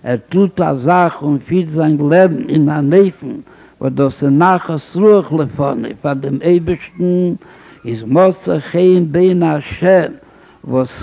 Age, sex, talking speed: 60-79, male, 120 wpm